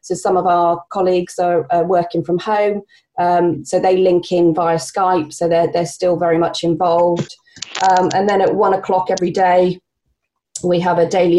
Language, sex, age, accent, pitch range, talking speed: English, female, 30-49, British, 170-190 Hz, 190 wpm